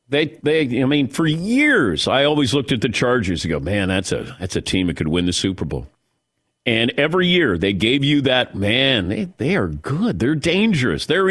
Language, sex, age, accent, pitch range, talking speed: English, male, 50-69, American, 110-165 Hz, 220 wpm